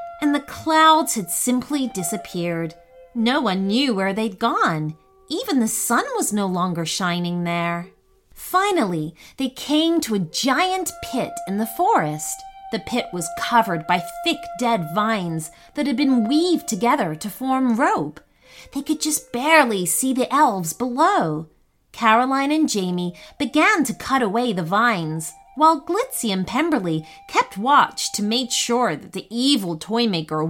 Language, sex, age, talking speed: English, female, 30-49, 150 wpm